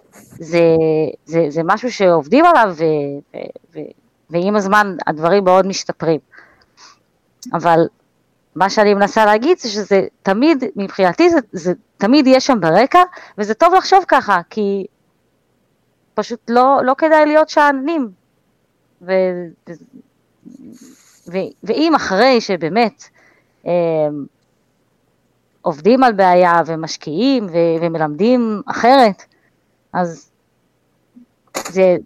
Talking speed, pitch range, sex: 100 wpm, 170-245 Hz, female